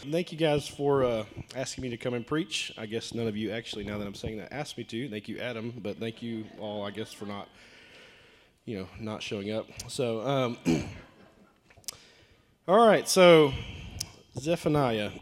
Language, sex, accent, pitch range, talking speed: English, male, American, 120-165 Hz, 185 wpm